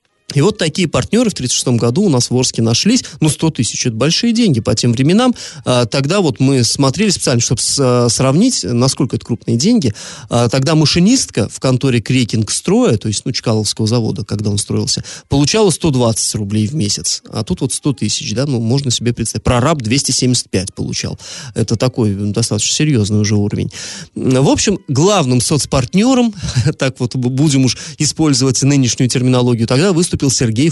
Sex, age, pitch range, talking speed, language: male, 20-39, 120-165 Hz, 170 wpm, Russian